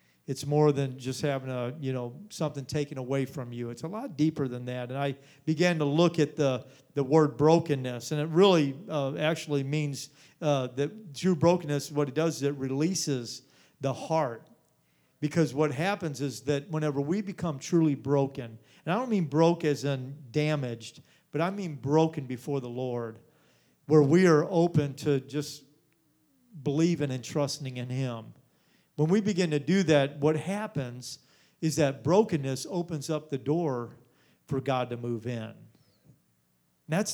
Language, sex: English, male